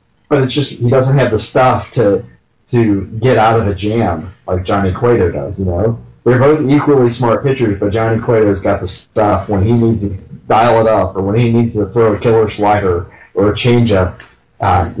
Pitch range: 100-120 Hz